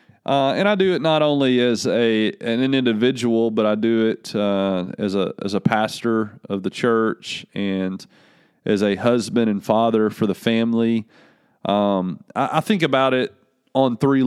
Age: 30-49